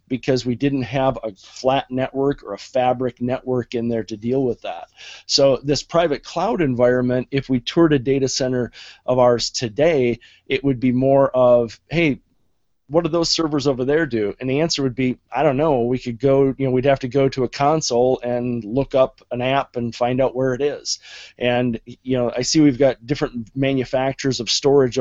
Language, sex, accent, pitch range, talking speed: English, male, American, 125-140 Hz, 205 wpm